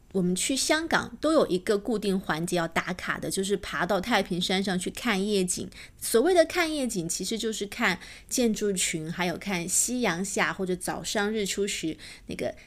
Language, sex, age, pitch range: Chinese, female, 30-49, 190-265 Hz